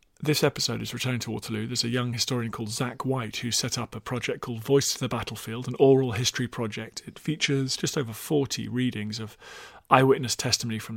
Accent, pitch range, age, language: British, 115-140 Hz, 40-59, English